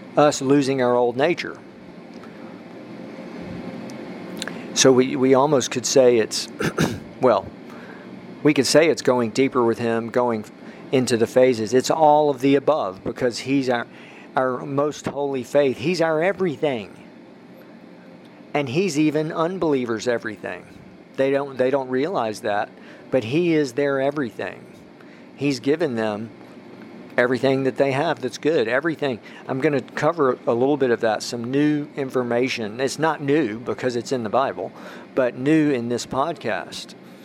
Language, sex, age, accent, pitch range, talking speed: English, male, 50-69, American, 120-145 Hz, 145 wpm